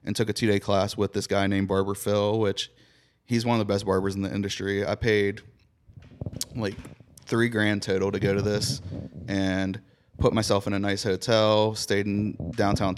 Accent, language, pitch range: American, English, 100-115 Hz